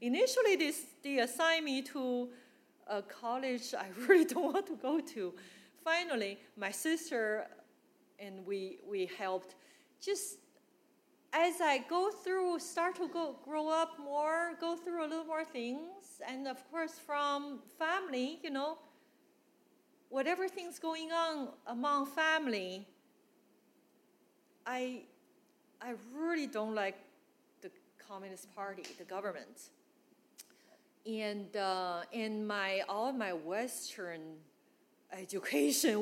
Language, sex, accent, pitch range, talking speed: English, female, Chinese, 195-315 Hz, 115 wpm